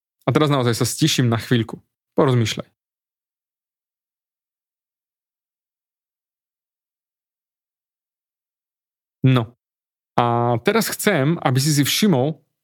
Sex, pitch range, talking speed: male, 125-155 Hz, 75 wpm